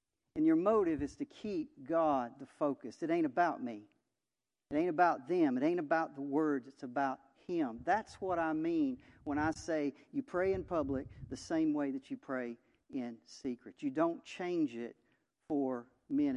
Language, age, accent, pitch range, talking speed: English, 50-69, American, 140-230 Hz, 185 wpm